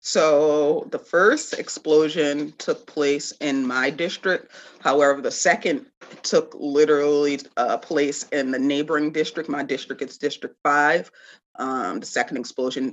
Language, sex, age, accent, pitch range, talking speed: English, female, 30-49, American, 135-155 Hz, 140 wpm